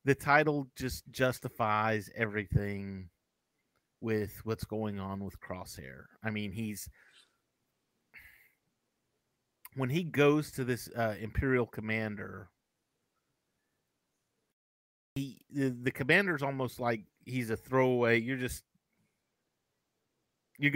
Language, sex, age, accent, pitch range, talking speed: English, male, 30-49, American, 110-140 Hz, 100 wpm